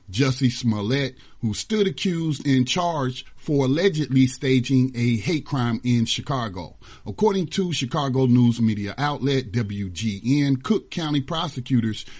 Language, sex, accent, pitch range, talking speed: English, male, American, 110-145 Hz, 125 wpm